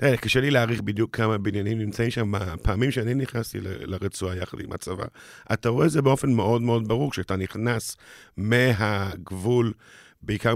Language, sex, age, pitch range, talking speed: Hebrew, male, 50-69, 100-120 Hz, 160 wpm